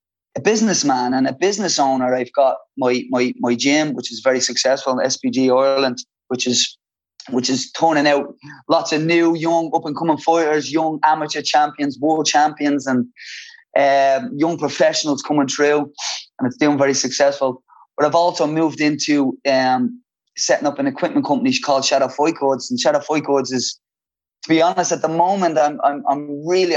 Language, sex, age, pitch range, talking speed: English, male, 20-39, 135-160 Hz, 175 wpm